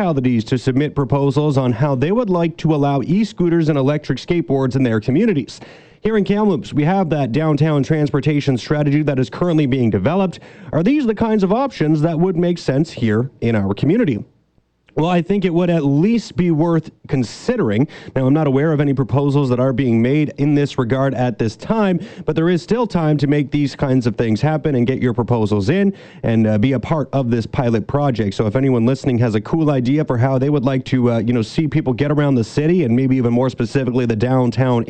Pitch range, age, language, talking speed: 120-160 Hz, 30-49, English, 220 wpm